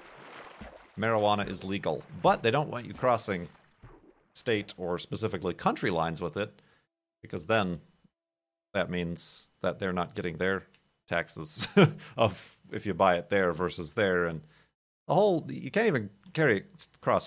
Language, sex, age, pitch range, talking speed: English, male, 40-59, 90-115 Hz, 150 wpm